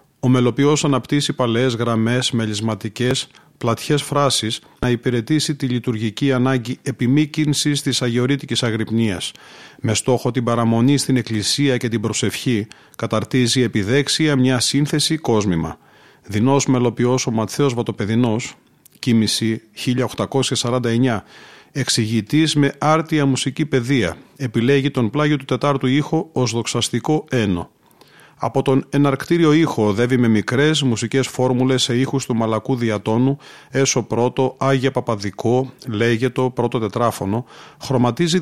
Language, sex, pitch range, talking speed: Greek, male, 115-135 Hz, 115 wpm